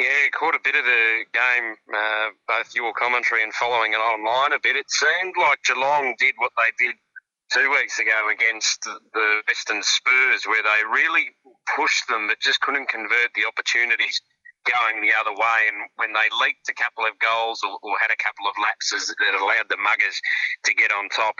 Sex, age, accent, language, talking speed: male, 30-49, Australian, English, 195 wpm